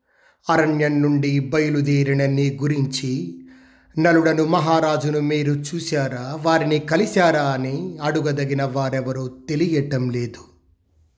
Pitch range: 140-165 Hz